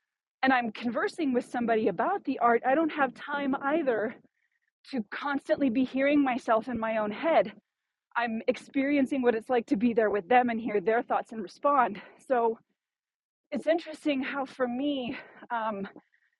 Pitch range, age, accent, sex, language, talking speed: 225-275 Hz, 30-49, American, female, English, 165 wpm